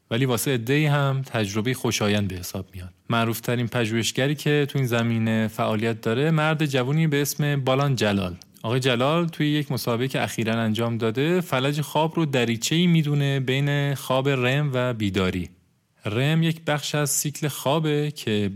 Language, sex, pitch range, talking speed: Persian, male, 105-140 Hz, 170 wpm